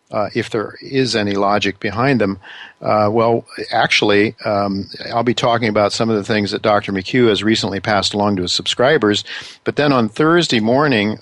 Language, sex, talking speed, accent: English, male, 185 wpm, American